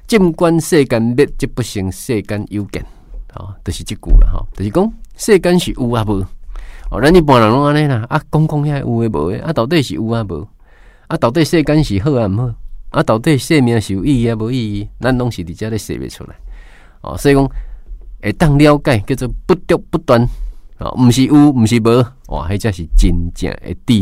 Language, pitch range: Chinese, 95-125 Hz